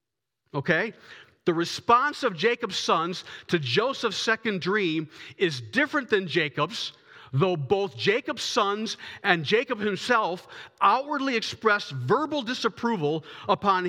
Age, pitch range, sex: 40-59, 175-230 Hz, male